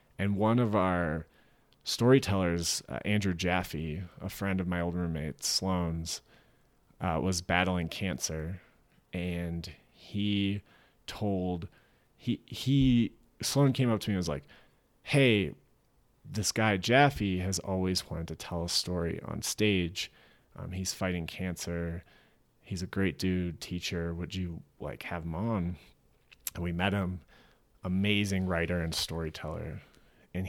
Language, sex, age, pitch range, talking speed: English, male, 30-49, 85-100 Hz, 135 wpm